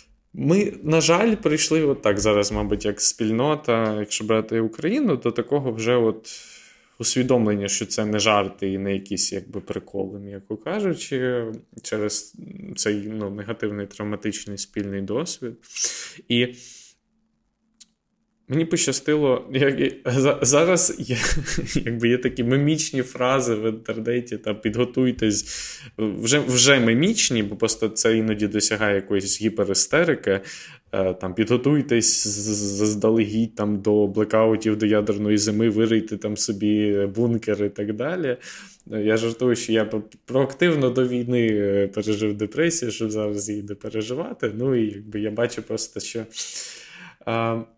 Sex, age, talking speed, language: male, 20-39, 120 wpm, Ukrainian